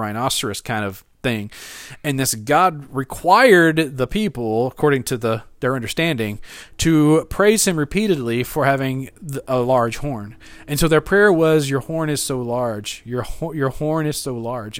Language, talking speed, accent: English, 160 wpm, American